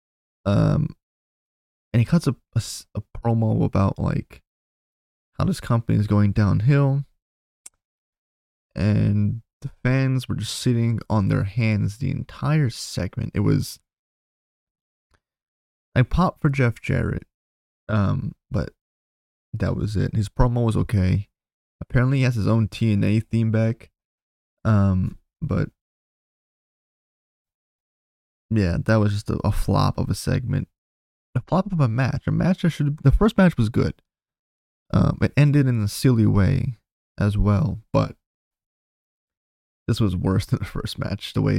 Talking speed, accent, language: 140 wpm, American, English